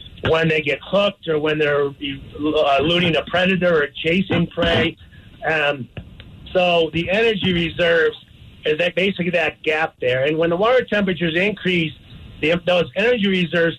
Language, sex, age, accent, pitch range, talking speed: English, male, 50-69, American, 155-180 Hz, 150 wpm